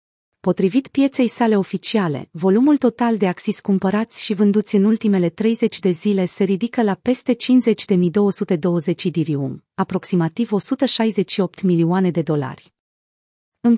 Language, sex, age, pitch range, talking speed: Romanian, female, 30-49, 175-225 Hz, 120 wpm